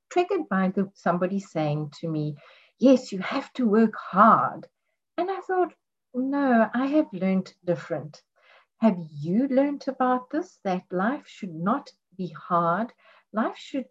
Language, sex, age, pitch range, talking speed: English, female, 50-69, 185-280 Hz, 145 wpm